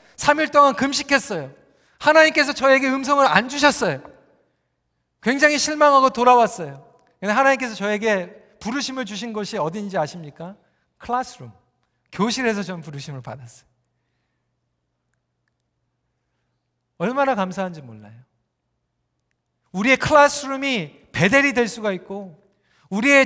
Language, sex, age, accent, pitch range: Korean, male, 40-59, native, 205-295 Hz